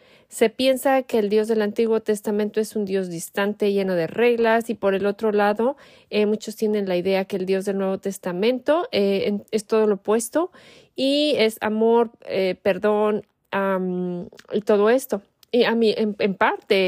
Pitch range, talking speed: 195-240 Hz, 185 wpm